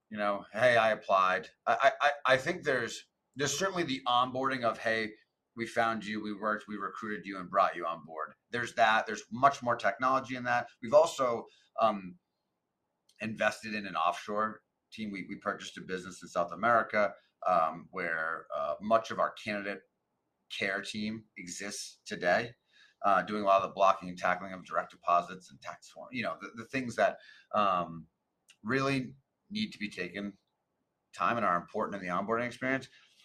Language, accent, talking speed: English, American, 180 wpm